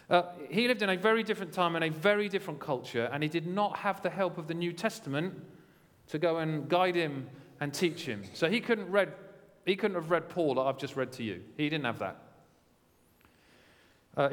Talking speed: 220 wpm